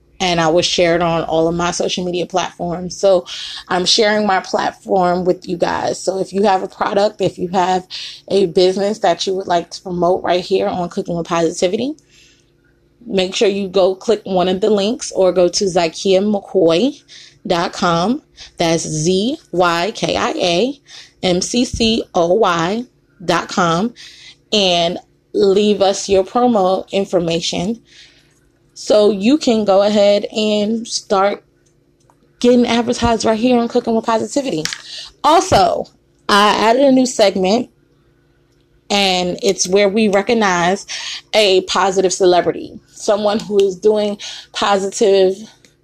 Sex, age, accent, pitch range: female, 20-39, American, 175-210 Hz